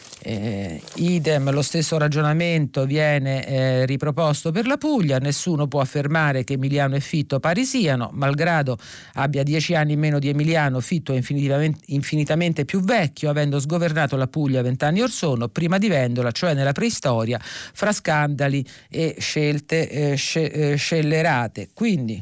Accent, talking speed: native, 145 wpm